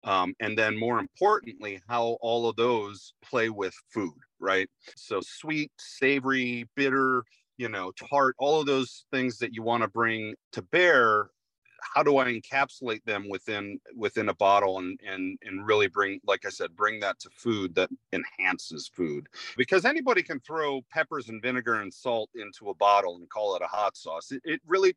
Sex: male